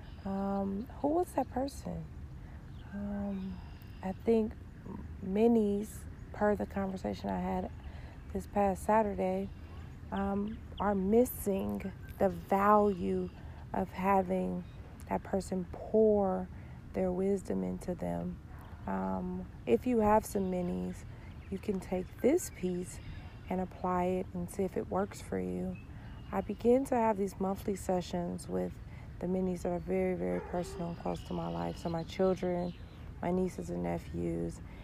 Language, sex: English, female